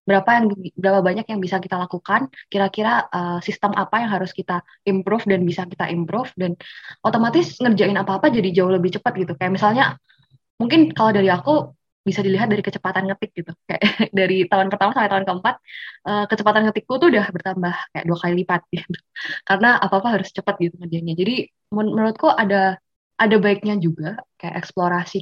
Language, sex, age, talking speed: Indonesian, female, 20-39, 175 wpm